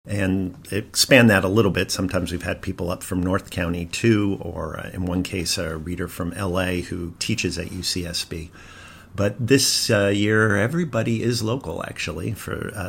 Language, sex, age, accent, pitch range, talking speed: English, male, 50-69, American, 85-105 Hz, 170 wpm